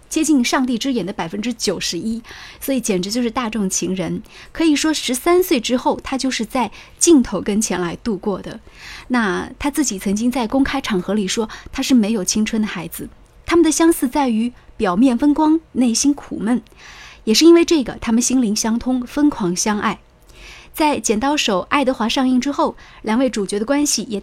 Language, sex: Chinese, female